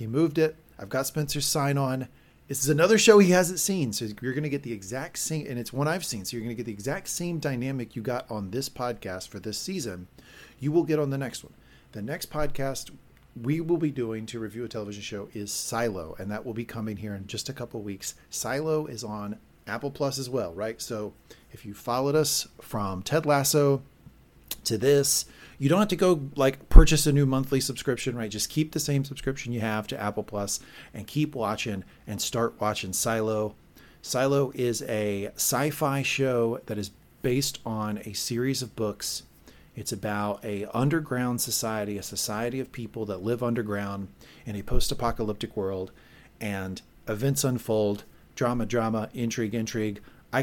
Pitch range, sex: 105-140 Hz, male